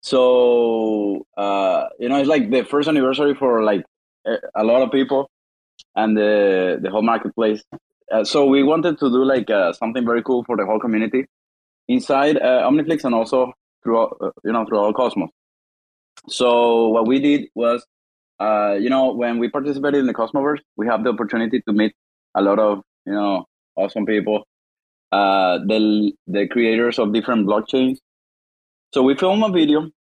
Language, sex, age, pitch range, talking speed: English, male, 20-39, 110-135 Hz, 170 wpm